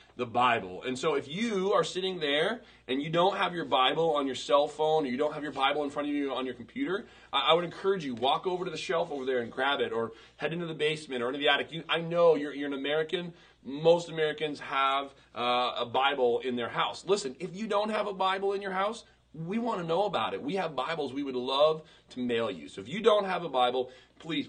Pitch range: 120-160 Hz